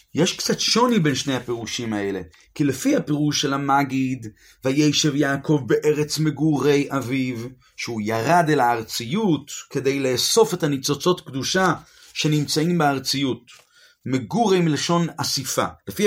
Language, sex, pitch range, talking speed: Hebrew, male, 140-175 Hz, 120 wpm